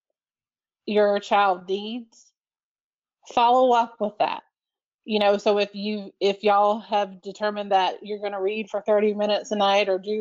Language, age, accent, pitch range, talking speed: English, 30-49, American, 200-230 Hz, 165 wpm